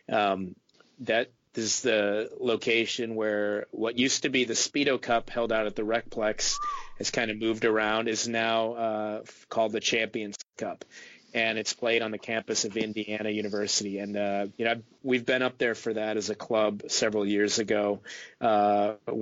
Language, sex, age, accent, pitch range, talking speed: English, male, 30-49, American, 105-115 Hz, 175 wpm